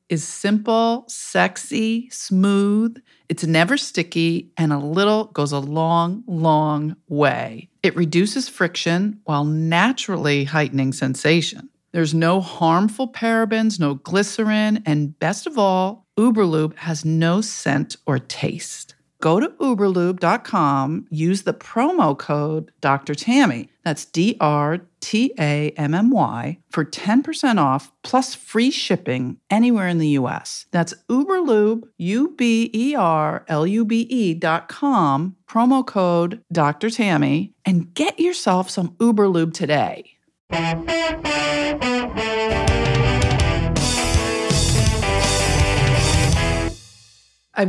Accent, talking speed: American, 95 wpm